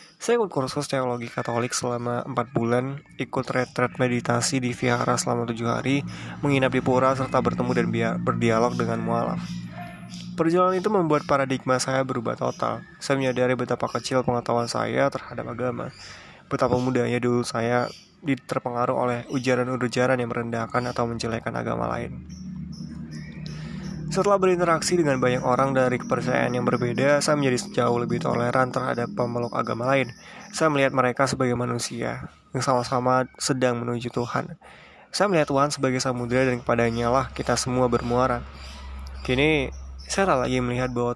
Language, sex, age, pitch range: Indonesian, male, 20-39, 120-140 Hz